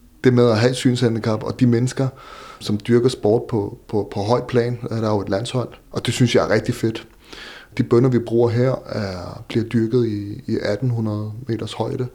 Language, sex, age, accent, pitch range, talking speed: Danish, male, 30-49, native, 110-125 Hz, 205 wpm